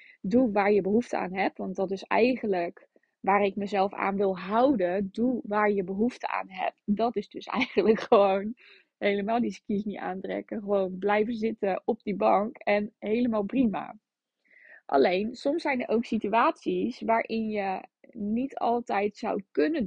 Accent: Dutch